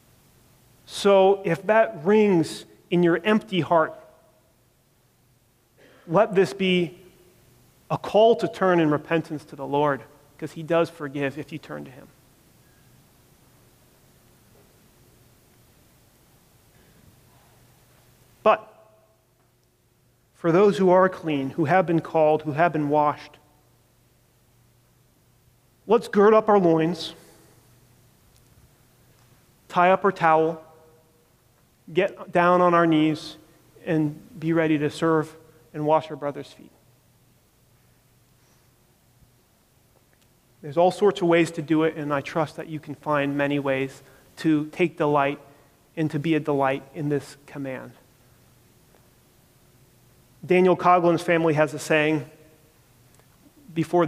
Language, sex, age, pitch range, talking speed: English, male, 40-59, 135-170 Hz, 115 wpm